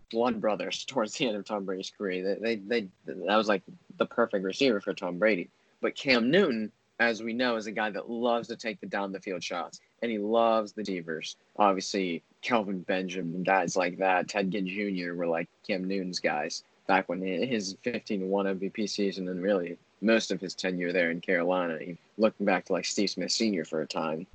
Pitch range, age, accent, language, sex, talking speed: 95-110 Hz, 20-39, American, English, male, 210 wpm